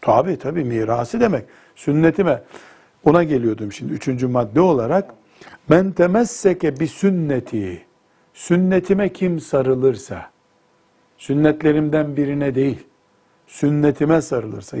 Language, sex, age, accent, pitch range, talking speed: Turkish, male, 60-79, native, 130-170 Hz, 95 wpm